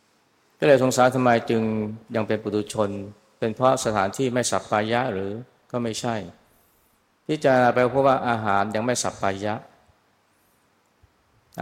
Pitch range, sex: 100-125 Hz, male